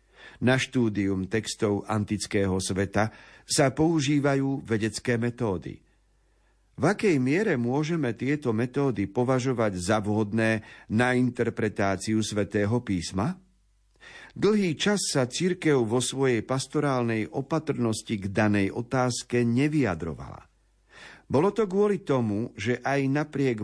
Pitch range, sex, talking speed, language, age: 105-135 Hz, male, 105 wpm, Slovak, 50-69